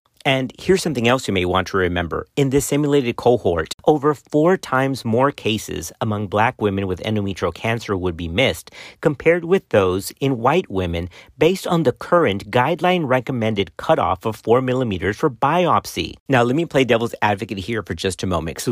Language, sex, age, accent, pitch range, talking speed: English, male, 50-69, American, 100-135 Hz, 180 wpm